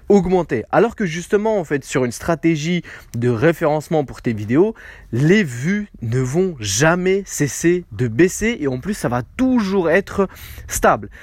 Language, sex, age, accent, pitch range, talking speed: French, male, 20-39, French, 130-190 Hz, 160 wpm